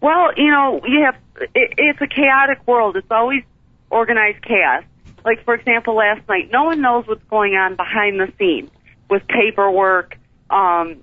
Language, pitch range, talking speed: English, 185-230 Hz, 165 wpm